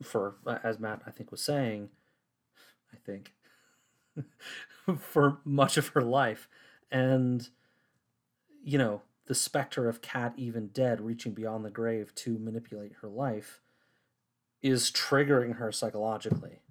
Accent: American